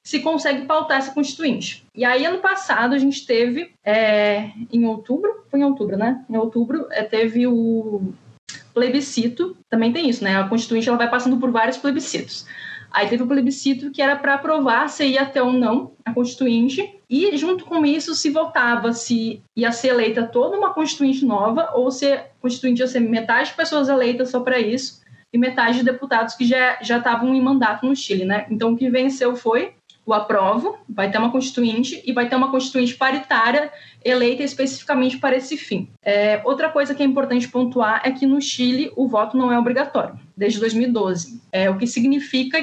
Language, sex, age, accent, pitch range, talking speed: Portuguese, female, 20-39, Brazilian, 230-280 Hz, 190 wpm